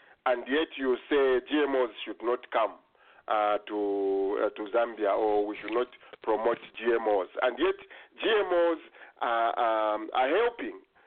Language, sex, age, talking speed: English, male, 50-69, 140 wpm